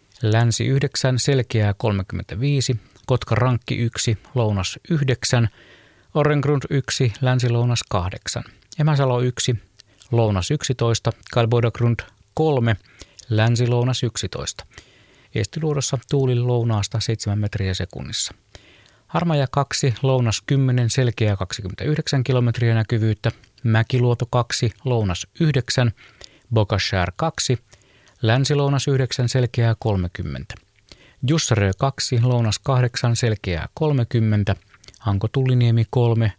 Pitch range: 105-130 Hz